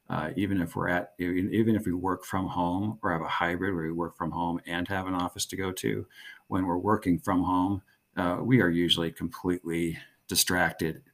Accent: American